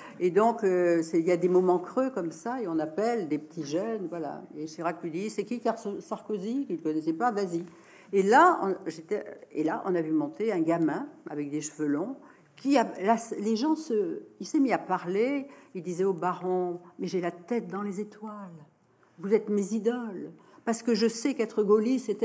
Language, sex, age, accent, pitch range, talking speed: French, female, 60-79, French, 170-245 Hz, 225 wpm